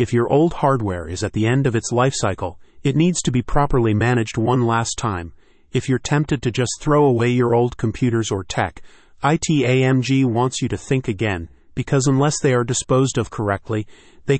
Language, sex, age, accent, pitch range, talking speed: English, male, 40-59, American, 110-135 Hz, 195 wpm